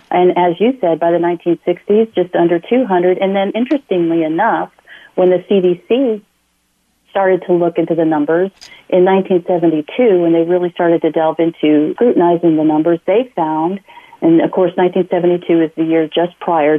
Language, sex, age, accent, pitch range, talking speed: English, female, 40-59, American, 160-200 Hz, 165 wpm